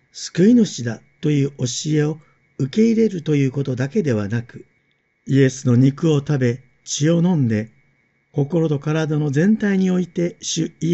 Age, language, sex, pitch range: 50-69, Japanese, male, 125-165 Hz